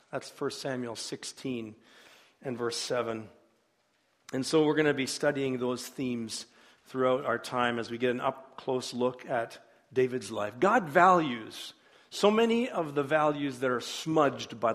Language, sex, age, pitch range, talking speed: English, male, 50-69, 135-180 Hz, 160 wpm